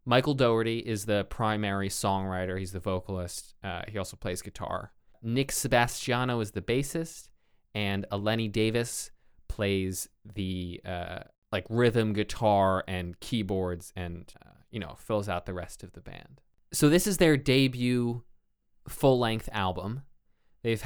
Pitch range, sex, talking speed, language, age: 100-125 Hz, male, 145 wpm, English, 20-39